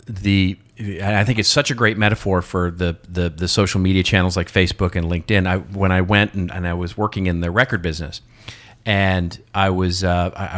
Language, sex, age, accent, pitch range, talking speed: English, male, 40-59, American, 95-115 Hz, 205 wpm